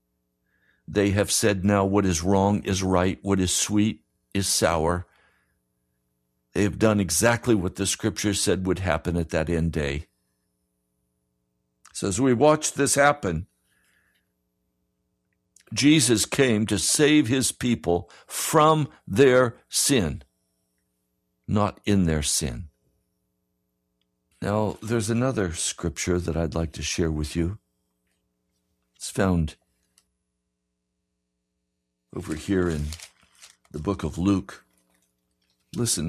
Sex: male